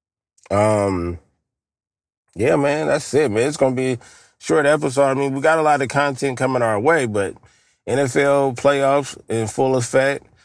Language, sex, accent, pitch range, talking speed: English, male, American, 130-180 Hz, 170 wpm